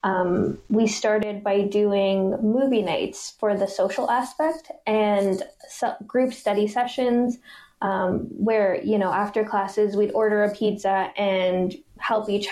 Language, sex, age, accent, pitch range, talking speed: English, female, 10-29, American, 195-230 Hz, 135 wpm